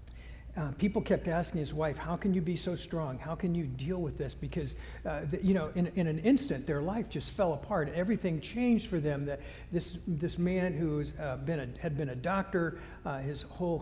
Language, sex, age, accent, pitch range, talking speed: English, male, 60-79, American, 165-230 Hz, 215 wpm